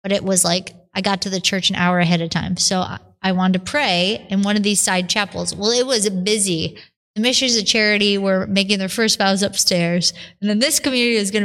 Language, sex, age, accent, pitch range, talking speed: English, female, 20-39, American, 190-225 Hz, 235 wpm